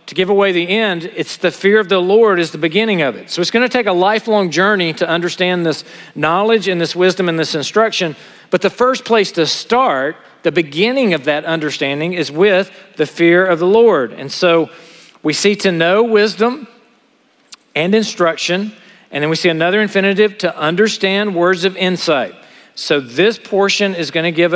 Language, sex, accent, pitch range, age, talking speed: English, male, American, 165-200 Hz, 40-59, 195 wpm